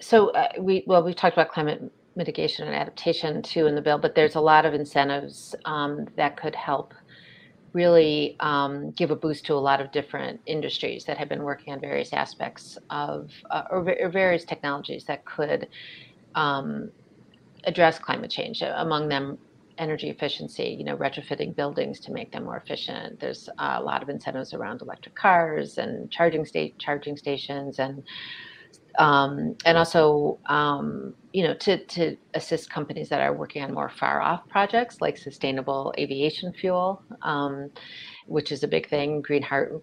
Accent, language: American, English